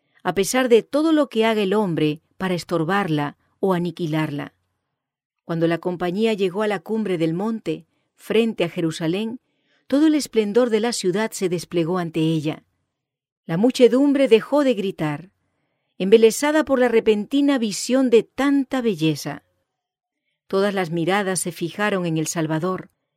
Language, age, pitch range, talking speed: English, 40-59, 160-230 Hz, 145 wpm